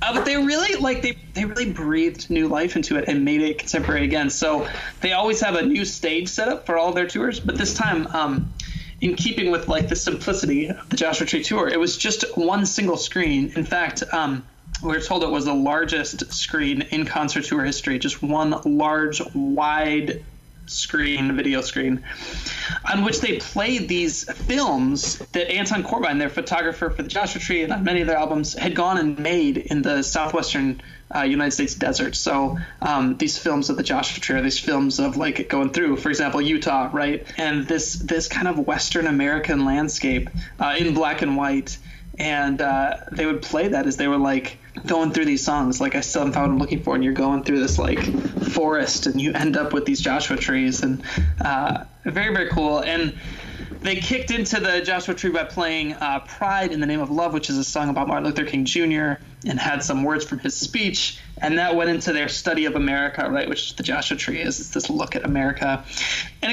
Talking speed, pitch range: 210 wpm, 145-185 Hz